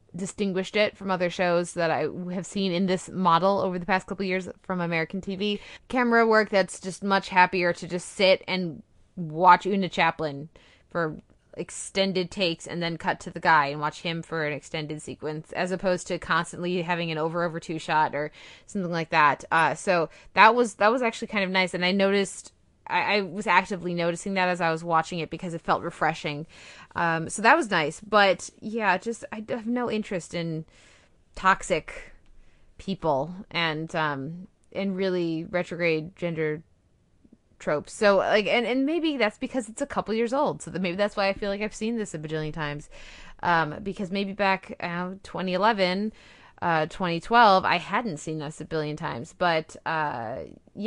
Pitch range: 165-200 Hz